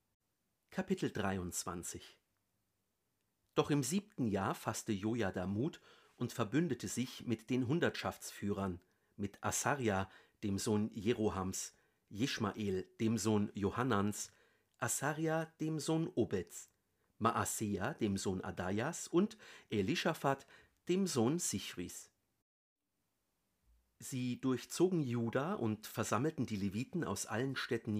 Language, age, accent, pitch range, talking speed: German, 50-69, German, 100-135 Hz, 105 wpm